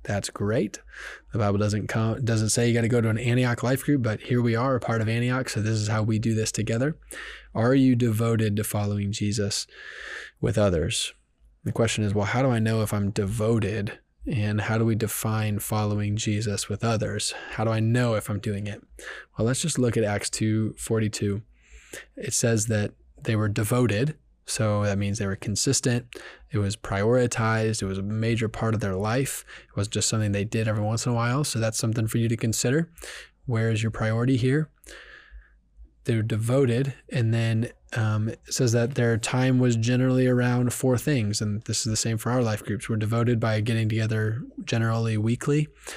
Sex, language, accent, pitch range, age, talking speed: male, English, American, 105-120 Hz, 20-39, 200 wpm